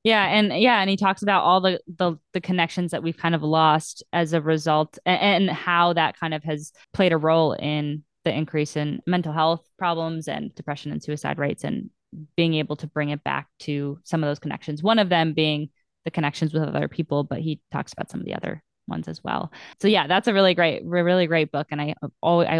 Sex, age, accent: female, 10-29, American